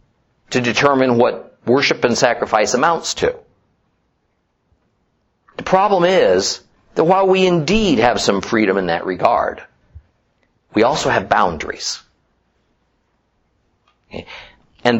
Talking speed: 105 wpm